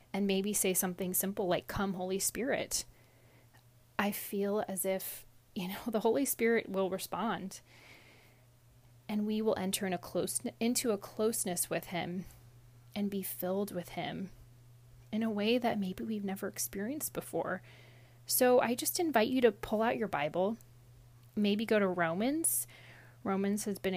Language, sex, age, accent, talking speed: English, female, 30-49, American, 160 wpm